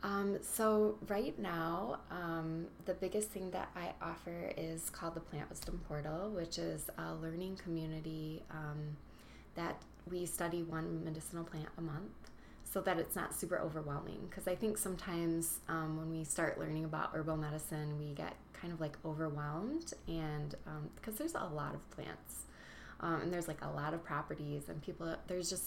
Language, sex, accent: English, female, American